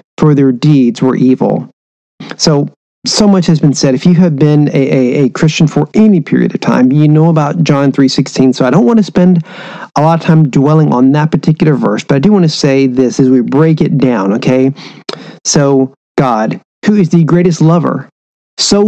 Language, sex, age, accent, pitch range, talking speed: English, male, 40-59, American, 140-185 Hz, 210 wpm